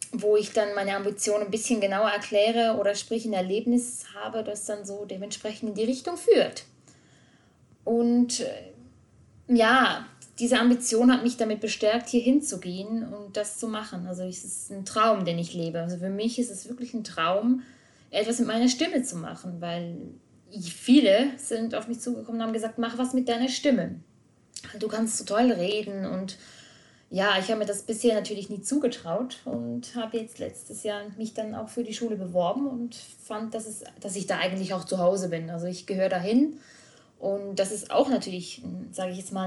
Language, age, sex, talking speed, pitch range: German, 20-39, female, 190 wpm, 185-230 Hz